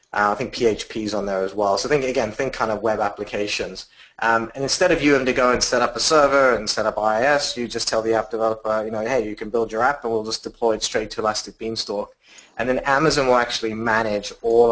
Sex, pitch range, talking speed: male, 105-120 Hz, 255 wpm